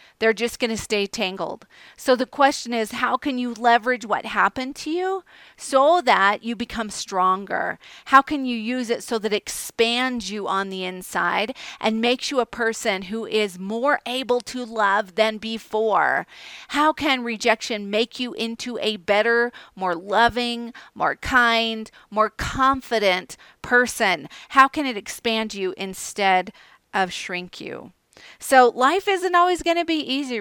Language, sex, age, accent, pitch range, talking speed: English, female, 40-59, American, 215-255 Hz, 160 wpm